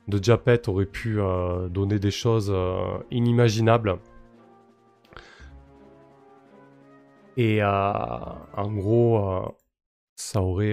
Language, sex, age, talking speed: French, male, 20-39, 95 wpm